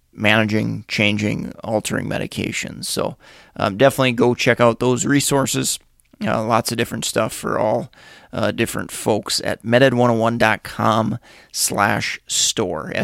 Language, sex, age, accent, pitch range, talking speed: English, male, 30-49, American, 105-125 Hz, 120 wpm